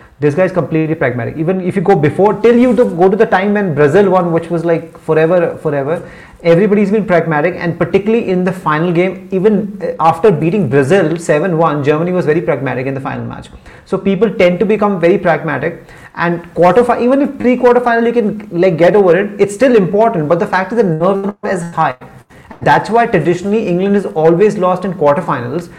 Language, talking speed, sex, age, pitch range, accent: English, 200 wpm, male, 30-49, 165-210 Hz, Indian